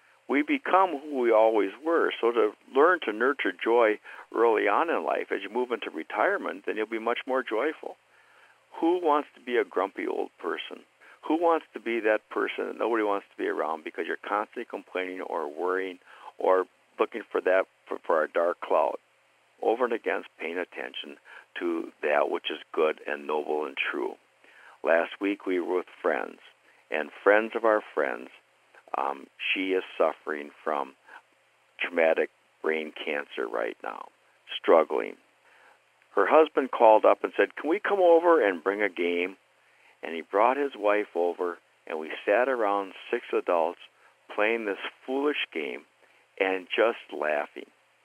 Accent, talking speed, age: American, 165 wpm, 60-79